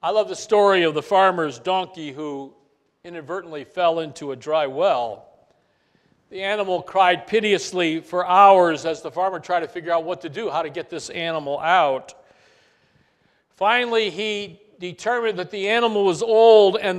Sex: male